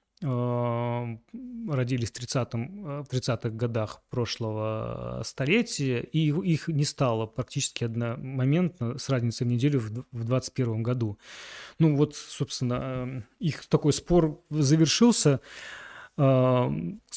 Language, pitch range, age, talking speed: Russian, 120-155 Hz, 20-39, 100 wpm